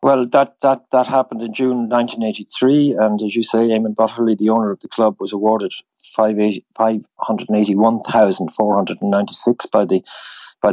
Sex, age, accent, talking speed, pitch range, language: male, 60-79, Irish, 205 wpm, 100-115 Hz, English